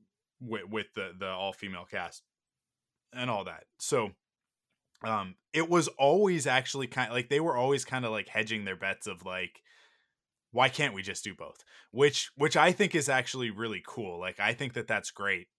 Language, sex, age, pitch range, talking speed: English, male, 20-39, 105-145 Hz, 195 wpm